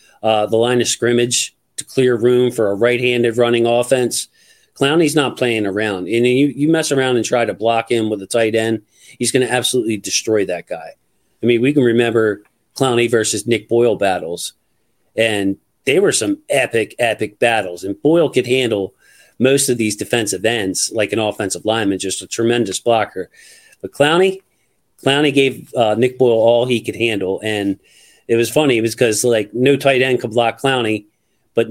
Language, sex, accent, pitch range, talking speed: English, male, American, 110-130 Hz, 185 wpm